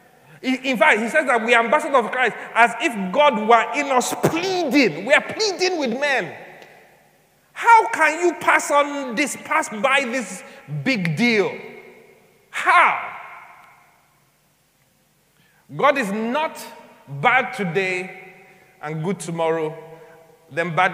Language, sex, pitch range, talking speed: English, male, 180-250 Hz, 125 wpm